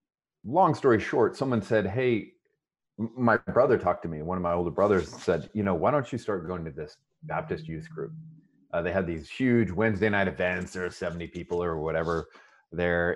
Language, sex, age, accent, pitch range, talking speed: English, male, 30-49, American, 85-110 Hz, 200 wpm